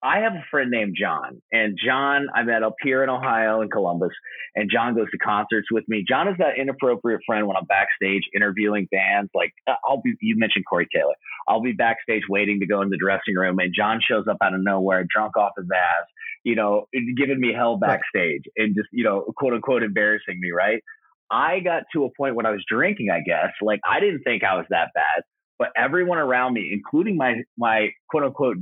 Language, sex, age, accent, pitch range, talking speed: English, male, 30-49, American, 100-130 Hz, 215 wpm